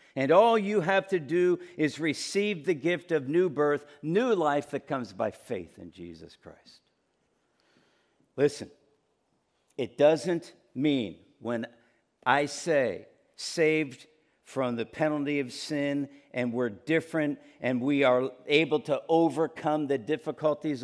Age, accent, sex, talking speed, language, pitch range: 50-69, American, male, 130 wpm, English, 145-170 Hz